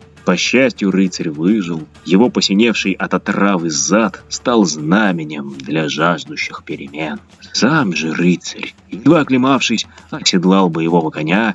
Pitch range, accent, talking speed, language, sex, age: 85-105 Hz, native, 110 wpm, Russian, male, 30-49